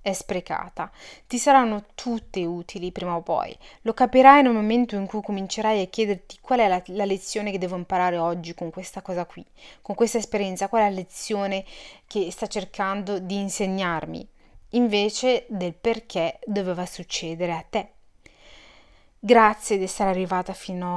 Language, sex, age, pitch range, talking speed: Italian, female, 30-49, 180-230 Hz, 155 wpm